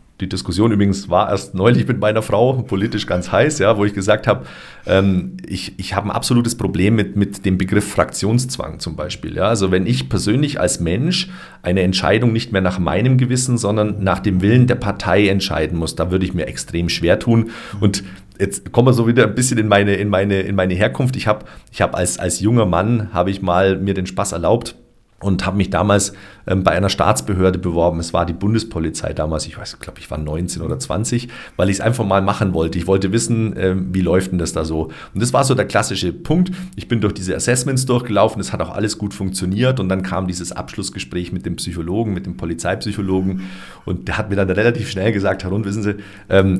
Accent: German